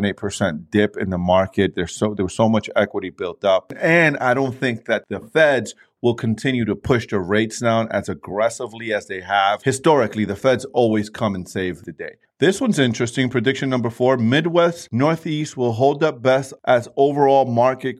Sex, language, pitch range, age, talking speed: male, English, 95-130 Hz, 30-49, 190 wpm